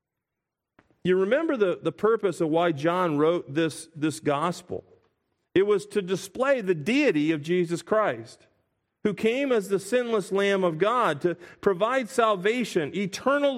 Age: 40-59